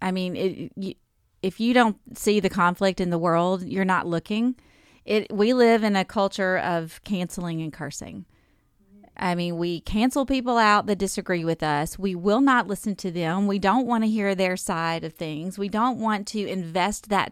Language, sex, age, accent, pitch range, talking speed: English, female, 30-49, American, 180-230 Hz, 200 wpm